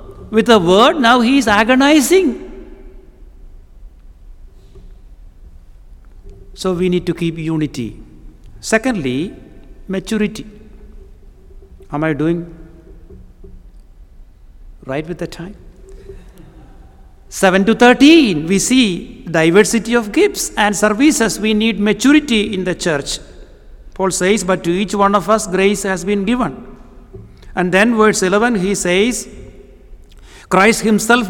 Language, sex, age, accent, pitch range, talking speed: English, male, 60-79, Indian, 145-220 Hz, 110 wpm